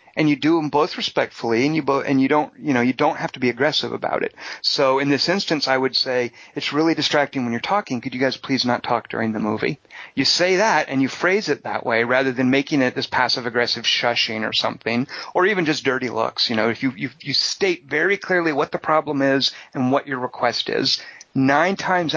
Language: English